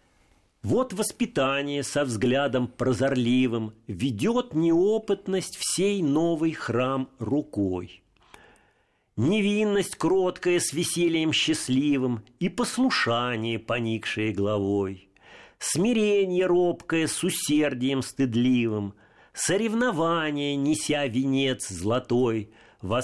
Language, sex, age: Russian, male, 50-69